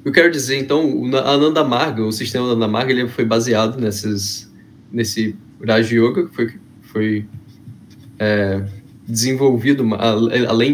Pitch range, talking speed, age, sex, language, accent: 110-145 Hz, 140 wpm, 10-29, male, Portuguese, Brazilian